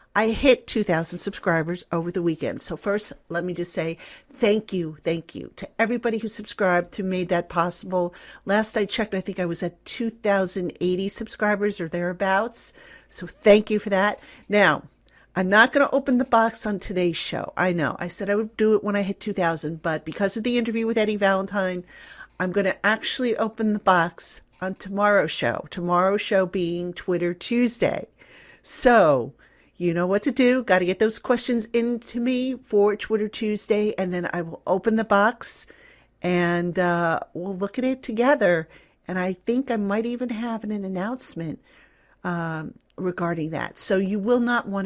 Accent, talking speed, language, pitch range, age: American, 185 wpm, English, 175-220 Hz, 50-69